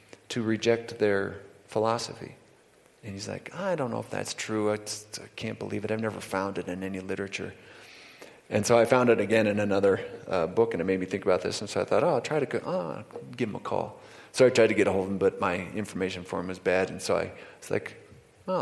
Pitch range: 100-120 Hz